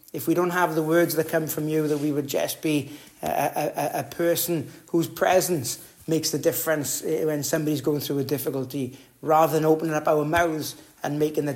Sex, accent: male, British